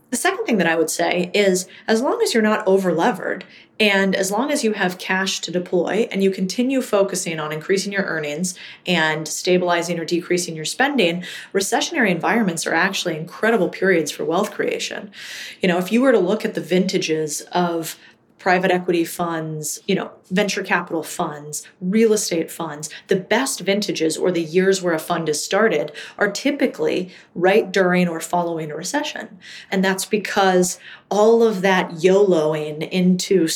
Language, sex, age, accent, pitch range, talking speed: English, female, 30-49, American, 170-205 Hz, 170 wpm